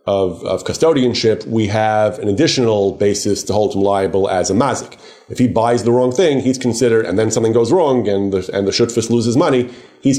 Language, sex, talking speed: English, male, 210 wpm